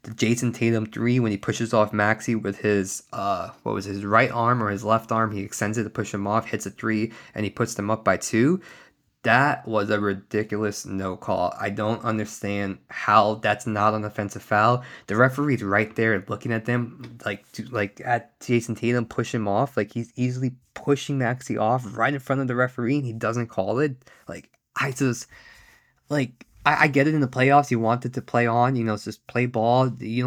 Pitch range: 110-140 Hz